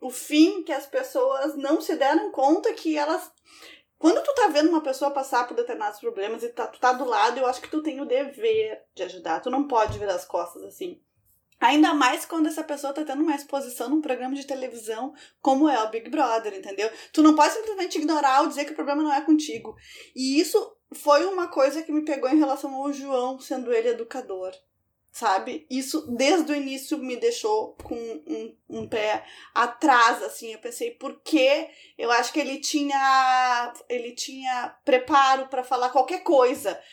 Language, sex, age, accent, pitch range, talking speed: Portuguese, female, 20-39, Brazilian, 240-310 Hz, 190 wpm